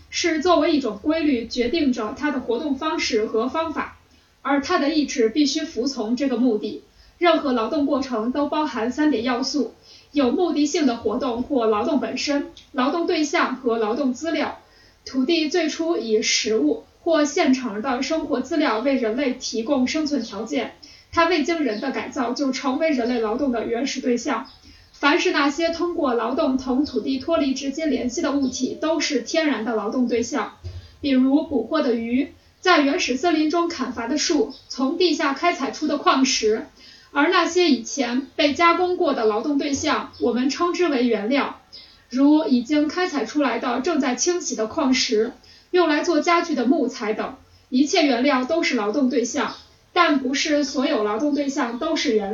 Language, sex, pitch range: Chinese, female, 245-315 Hz